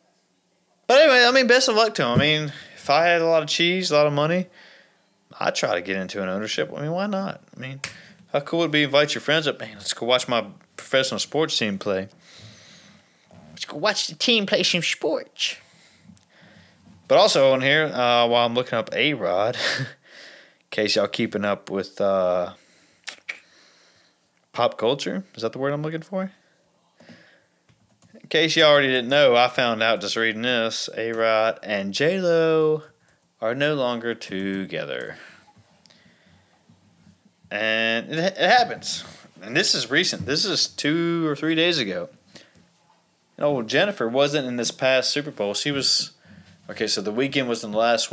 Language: English